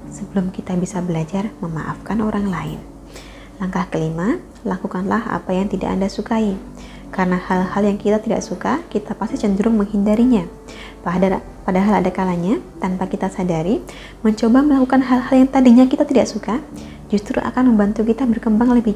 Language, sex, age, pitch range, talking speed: Indonesian, female, 20-39, 185-245 Hz, 140 wpm